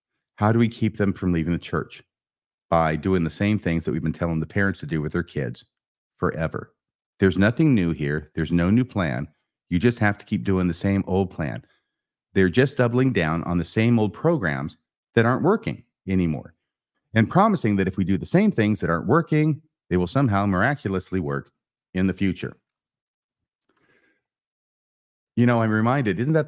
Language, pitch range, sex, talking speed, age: English, 85-120 Hz, male, 190 wpm, 40-59